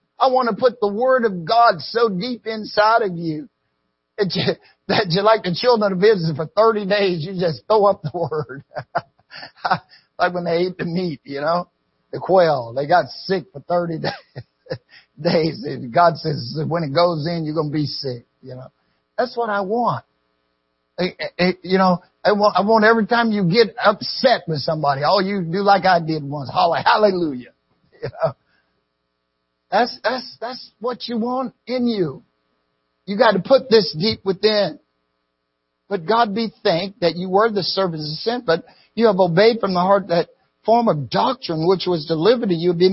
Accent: American